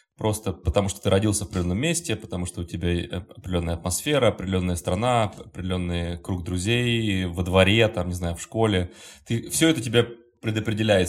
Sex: male